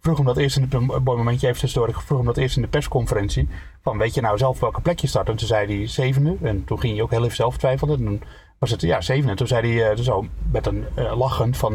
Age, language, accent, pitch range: 30-49, Dutch, Dutch, 110-135 Hz